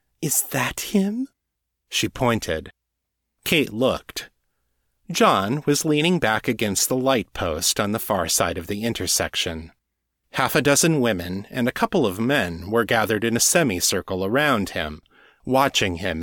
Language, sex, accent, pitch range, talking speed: English, male, American, 85-140 Hz, 145 wpm